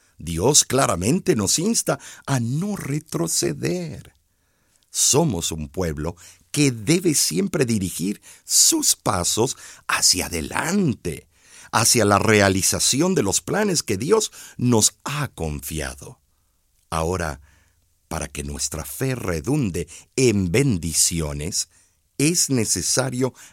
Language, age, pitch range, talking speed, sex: Spanish, 50-69, 85-130 Hz, 100 wpm, male